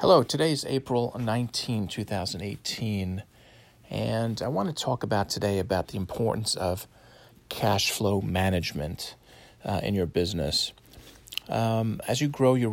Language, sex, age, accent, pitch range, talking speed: English, male, 40-59, American, 95-115 Hz, 135 wpm